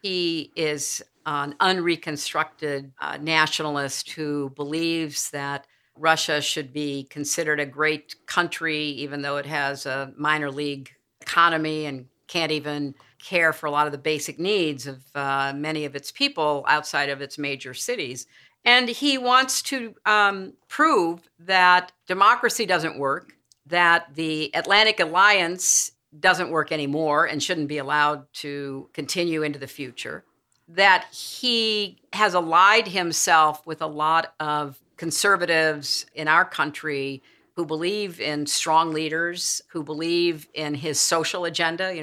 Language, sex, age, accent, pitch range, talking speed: English, female, 50-69, American, 150-175 Hz, 140 wpm